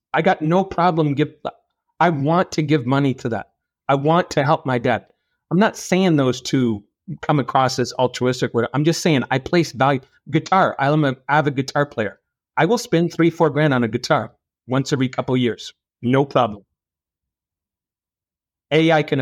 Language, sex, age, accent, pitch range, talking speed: English, male, 40-59, American, 130-165 Hz, 185 wpm